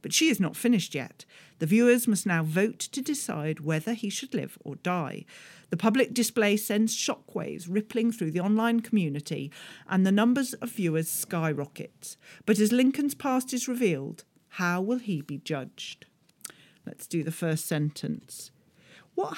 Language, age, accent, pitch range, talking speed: English, 40-59, British, 165-245 Hz, 160 wpm